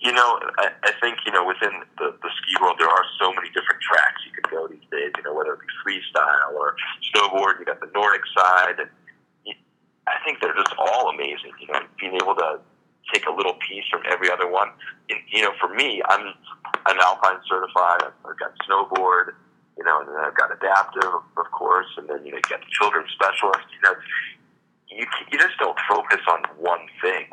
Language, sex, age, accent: English, male, 40-59, American